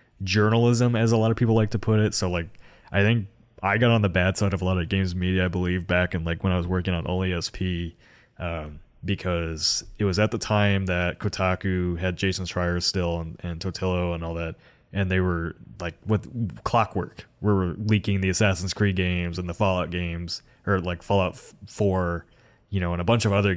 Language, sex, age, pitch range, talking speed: English, male, 20-39, 90-105 Hz, 215 wpm